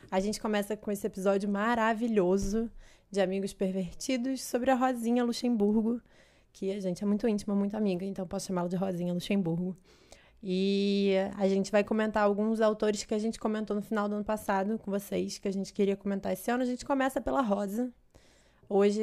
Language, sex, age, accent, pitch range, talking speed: Portuguese, female, 20-39, Brazilian, 190-215 Hz, 185 wpm